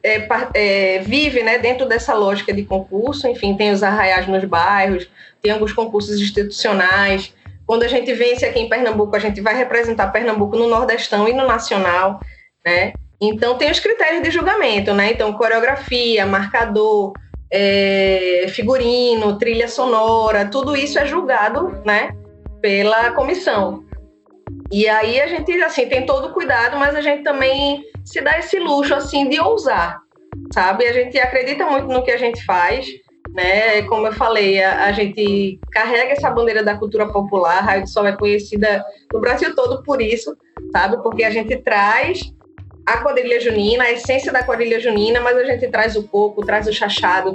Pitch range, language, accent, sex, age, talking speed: 205-265 Hz, Portuguese, Brazilian, female, 20-39, 165 wpm